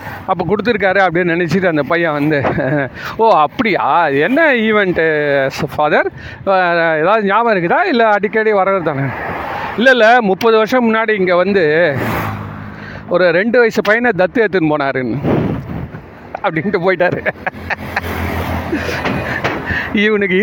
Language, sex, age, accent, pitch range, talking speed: Tamil, male, 40-59, native, 165-230 Hz, 110 wpm